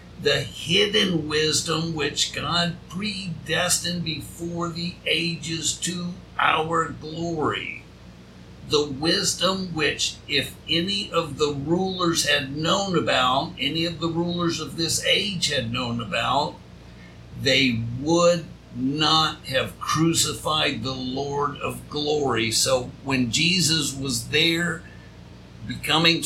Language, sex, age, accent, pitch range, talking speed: English, male, 60-79, American, 140-165 Hz, 110 wpm